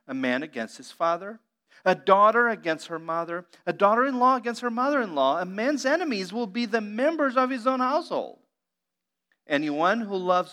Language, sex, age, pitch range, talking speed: English, male, 40-59, 155-240 Hz, 165 wpm